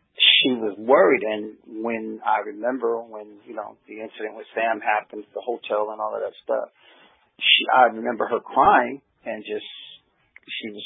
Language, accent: English, American